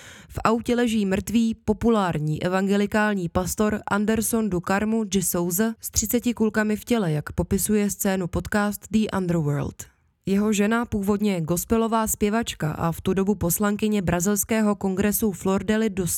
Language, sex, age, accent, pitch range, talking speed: Czech, female, 20-39, native, 190-225 Hz, 140 wpm